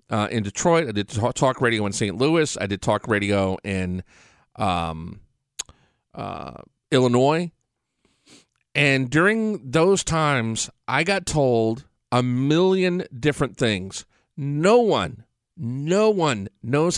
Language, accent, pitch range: English, American, 115-175 Hz